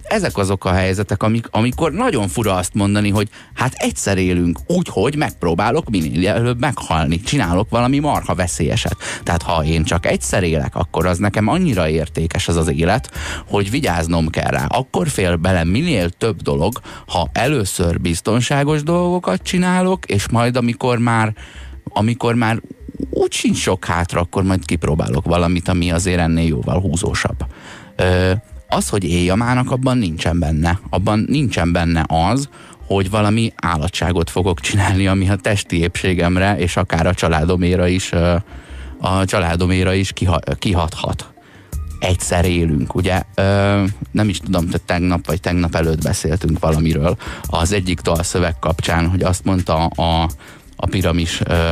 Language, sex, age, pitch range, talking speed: Hungarian, male, 30-49, 85-105 Hz, 140 wpm